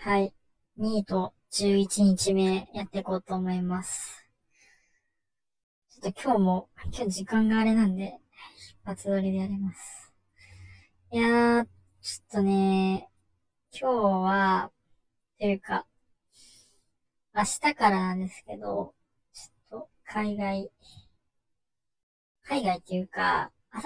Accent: native